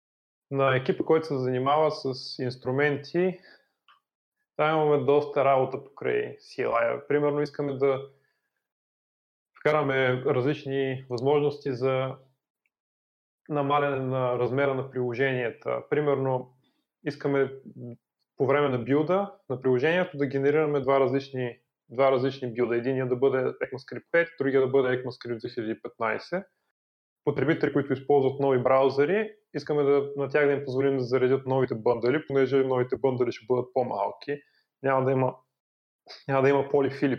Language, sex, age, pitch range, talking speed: Bulgarian, male, 20-39, 130-145 Hz, 125 wpm